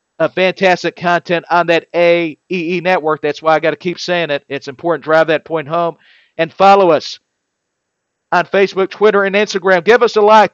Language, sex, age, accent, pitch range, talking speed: English, male, 50-69, American, 170-215 Hz, 180 wpm